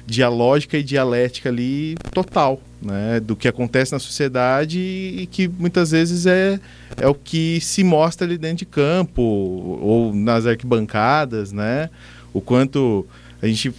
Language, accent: Portuguese, Brazilian